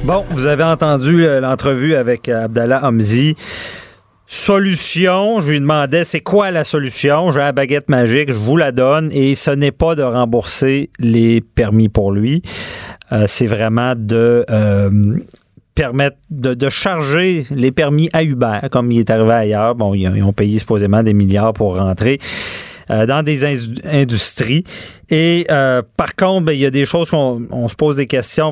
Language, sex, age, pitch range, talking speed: French, male, 40-59, 110-155 Hz, 180 wpm